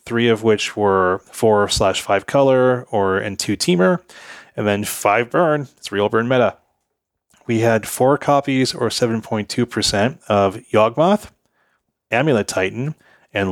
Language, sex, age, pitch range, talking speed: English, male, 30-49, 105-130 Hz, 150 wpm